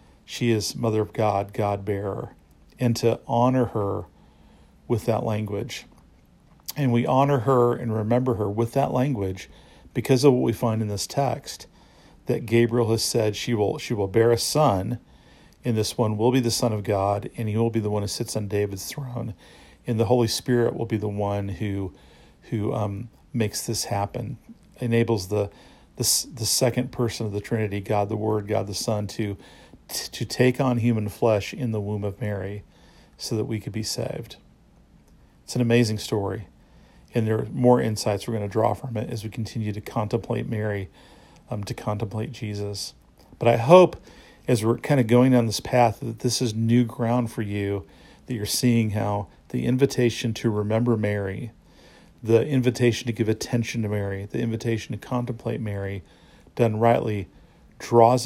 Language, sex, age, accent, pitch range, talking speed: English, male, 50-69, American, 105-120 Hz, 180 wpm